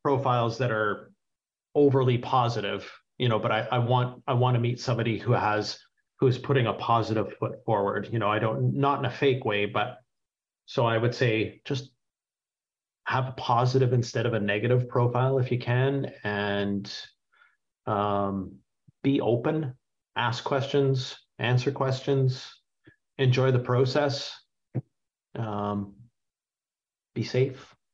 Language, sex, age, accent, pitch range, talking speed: English, male, 40-59, American, 110-135 Hz, 135 wpm